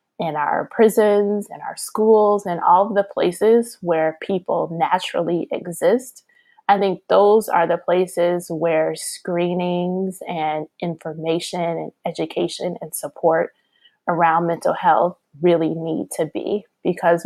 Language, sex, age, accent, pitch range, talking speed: English, female, 20-39, American, 175-215 Hz, 130 wpm